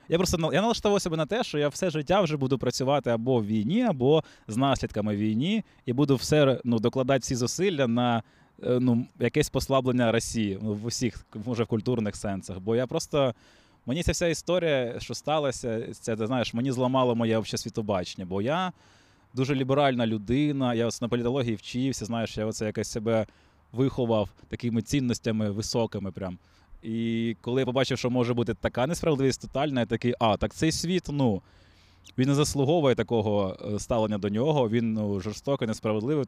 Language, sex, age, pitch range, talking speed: Ukrainian, male, 20-39, 110-135 Hz, 170 wpm